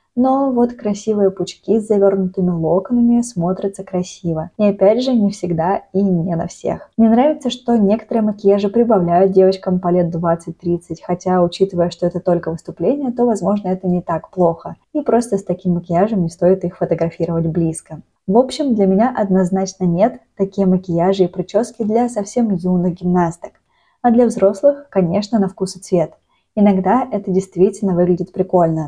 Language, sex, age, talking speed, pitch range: Russian, female, 20-39, 160 wpm, 175-215 Hz